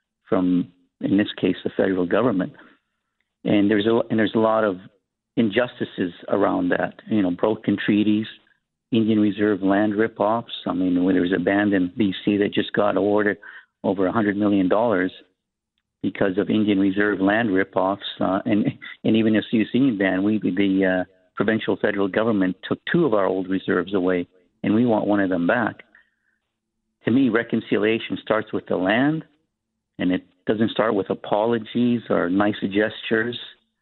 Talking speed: 165 wpm